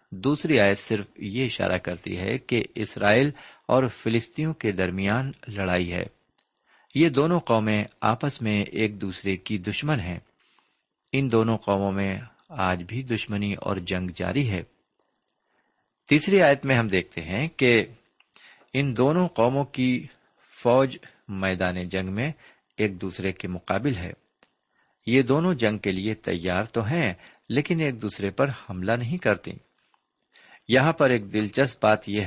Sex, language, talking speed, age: male, Urdu, 145 wpm, 50-69